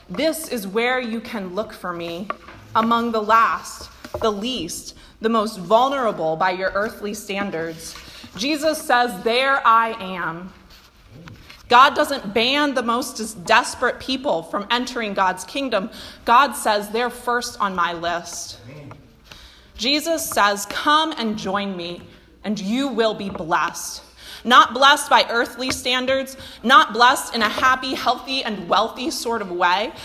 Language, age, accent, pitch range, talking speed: English, 20-39, American, 200-260 Hz, 140 wpm